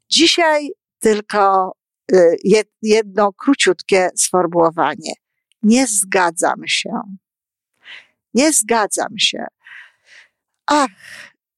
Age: 50-69